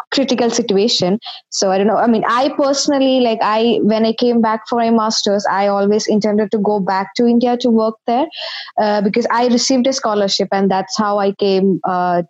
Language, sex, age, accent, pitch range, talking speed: English, female, 20-39, Indian, 195-235 Hz, 205 wpm